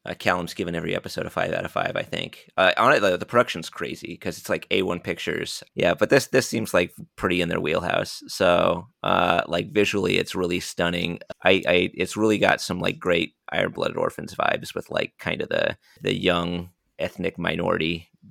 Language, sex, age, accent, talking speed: English, male, 30-49, American, 205 wpm